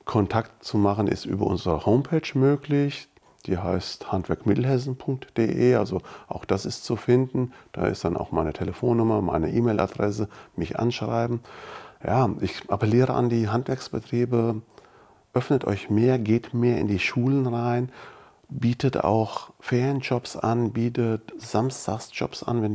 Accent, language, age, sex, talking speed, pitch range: German, German, 40-59, male, 130 wpm, 100-120 Hz